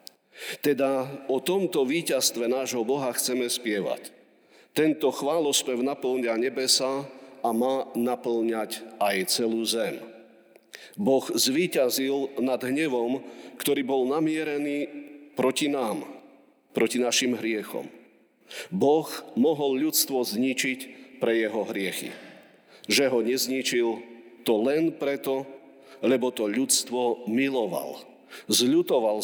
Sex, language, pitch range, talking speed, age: male, Slovak, 120-135 Hz, 100 wpm, 50-69